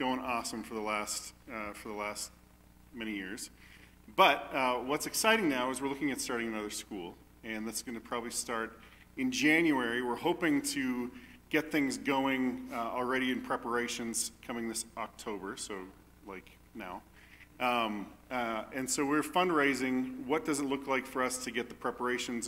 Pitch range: 110-135 Hz